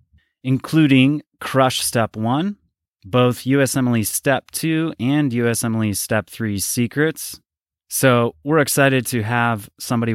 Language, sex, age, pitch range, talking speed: English, male, 30-49, 105-140 Hz, 110 wpm